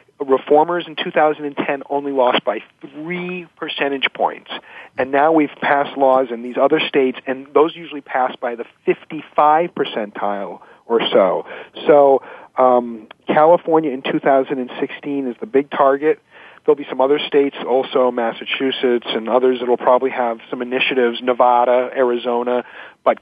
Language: English